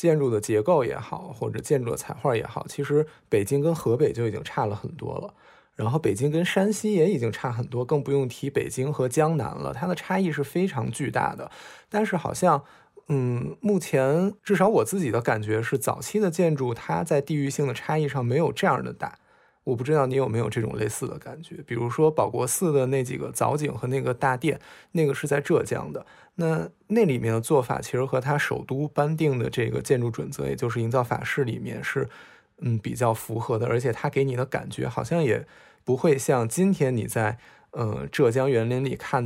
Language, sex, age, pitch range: Chinese, male, 20-39, 125-165 Hz